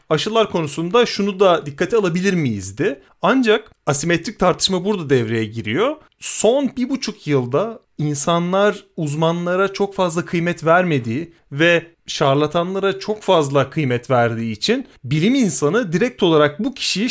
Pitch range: 140-195 Hz